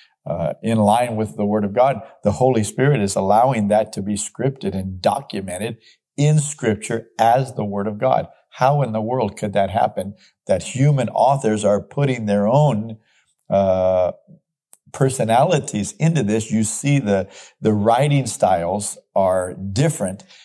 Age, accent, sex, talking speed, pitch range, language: 50-69, American, male, 155 wpm, 105-130 Hz, English